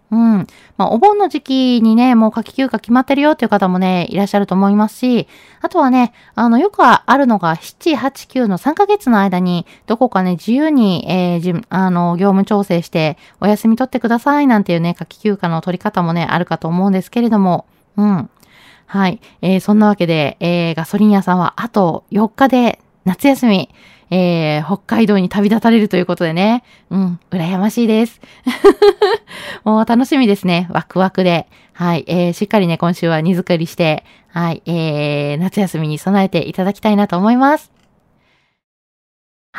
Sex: female